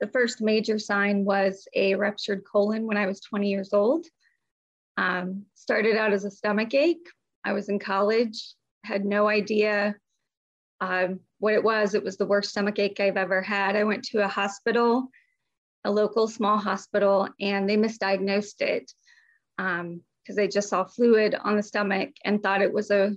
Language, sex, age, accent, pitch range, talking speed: English, female, 30-49, American, 200-230 Hz, 175 wpm